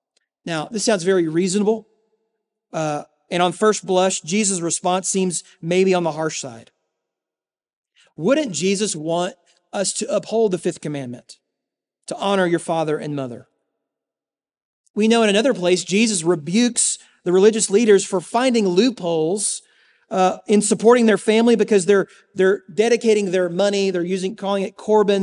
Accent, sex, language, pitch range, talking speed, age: American, male, English, 175-215 Hz, 145 wpm, 40-59